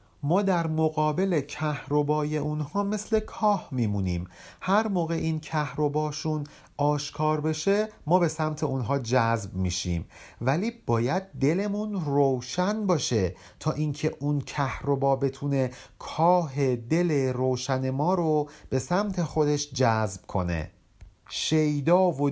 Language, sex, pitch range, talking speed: Persian, male, 135-165 Hz, 115 wpm